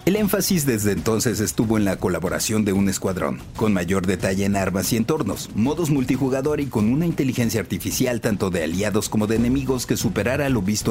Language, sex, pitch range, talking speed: Spanish, male, 100-130 Hz, 195 wpm